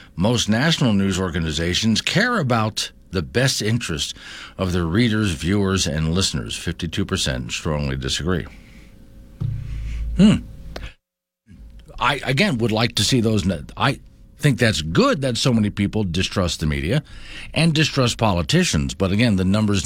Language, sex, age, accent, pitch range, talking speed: English, male, 50-69, American, 85-120 Hz, 135 wpm